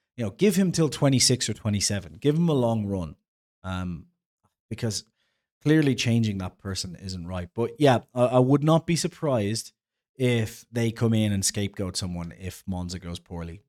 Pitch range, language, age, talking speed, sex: 105-130 Hz, English, 30-49, 175 wpm, male